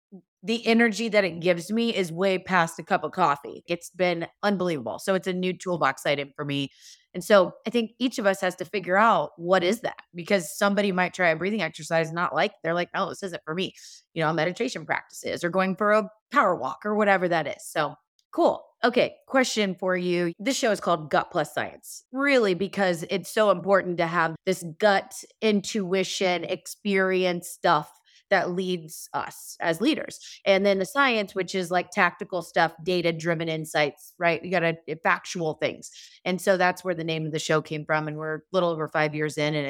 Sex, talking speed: female, 205 wpm